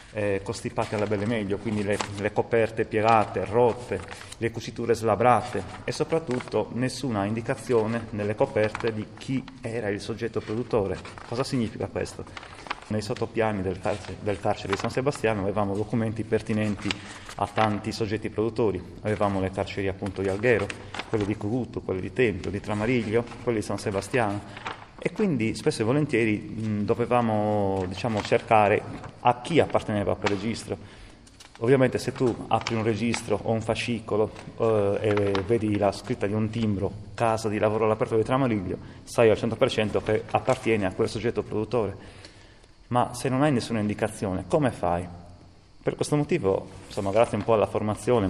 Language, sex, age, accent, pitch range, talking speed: Italian, male, 30-49, native, 100-120 Hz, 155 wpm